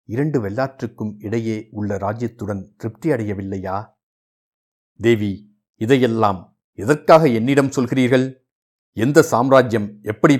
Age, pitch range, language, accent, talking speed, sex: 60-79, 105-130 Hz, Tamil, native, 85 wpm, male